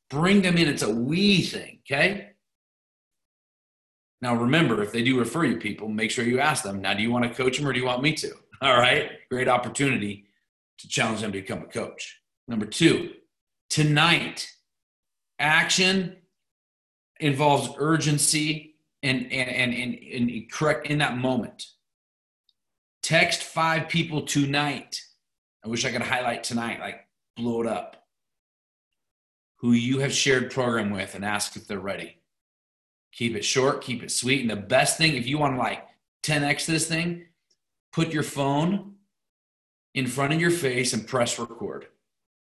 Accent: American